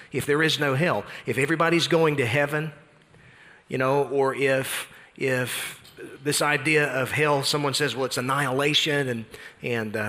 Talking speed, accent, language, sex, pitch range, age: 160 wpm, American, English, male, 140-165 Hz, 40-59